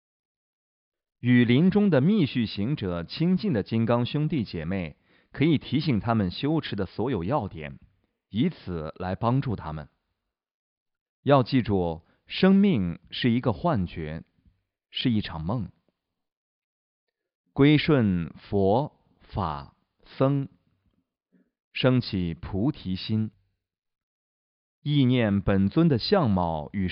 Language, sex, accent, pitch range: Chinese, male, native, 90-135 Hz